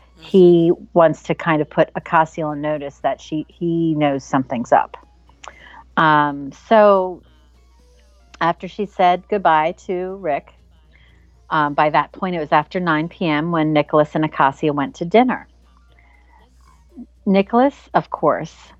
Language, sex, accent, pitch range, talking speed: English, female, American, 125-170 Hz, 135 wpm